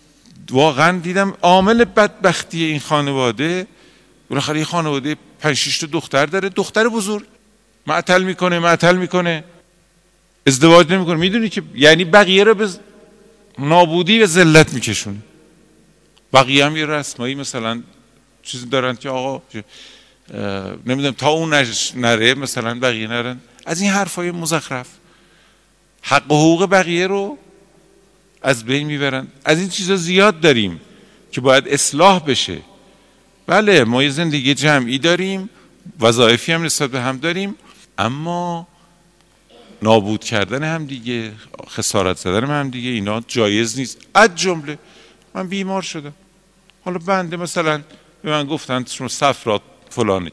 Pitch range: 130-180 Hz